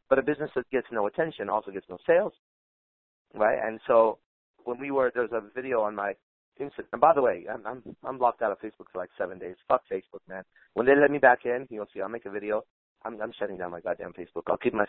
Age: 30-49